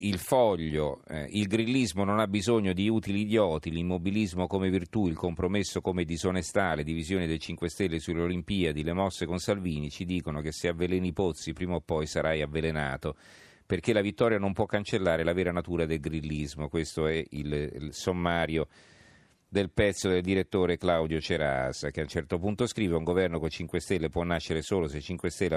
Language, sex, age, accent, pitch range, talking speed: Italian, male, 40-59, native, 80-95 Hz, 190 wpm